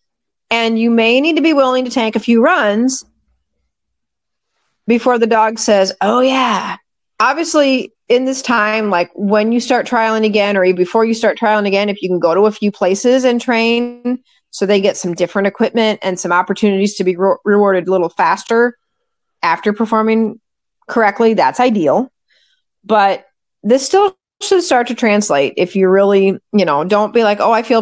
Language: English